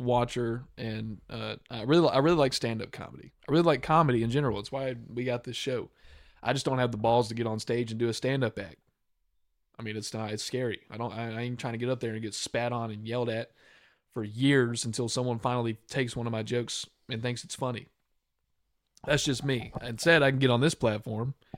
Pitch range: 115-135 Hz